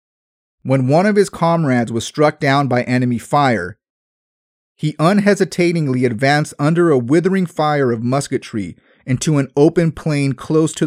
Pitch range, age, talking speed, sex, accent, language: 125-160 Hz, 30-49, 145 wpm, male, American, English